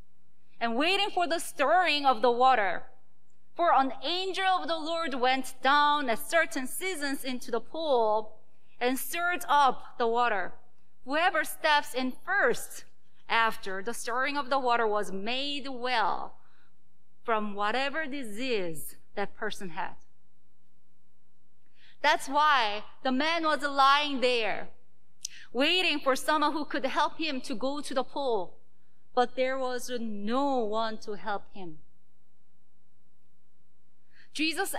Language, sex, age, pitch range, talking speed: English, female, 30-49, 230-295 Hz, 130 wpm